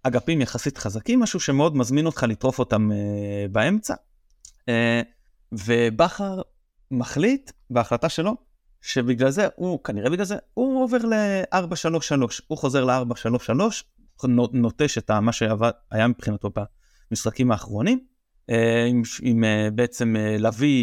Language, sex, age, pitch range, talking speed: Hebrew, male, 30-49, 115-160 Hz, 125 wpm